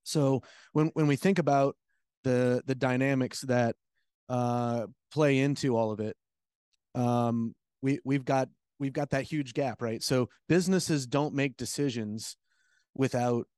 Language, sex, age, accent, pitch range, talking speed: English, male, 30-49, American, 115-140 Hz, 140 wpm